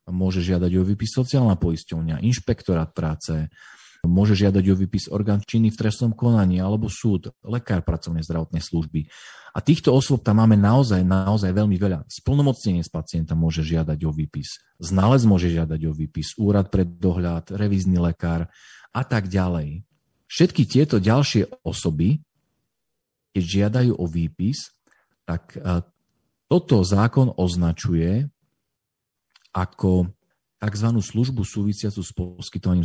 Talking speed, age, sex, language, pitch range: 125 wpm, 40-59, male, Slovak, 85-115 Hz